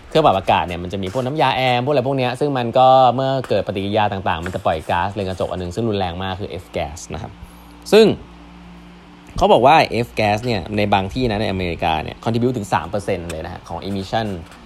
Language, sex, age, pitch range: Thai, male, 20-39, 95-125 Hz